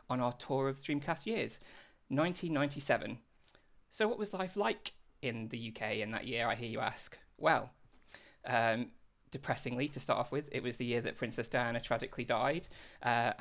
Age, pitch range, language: 20-39, 120-140 Hz, English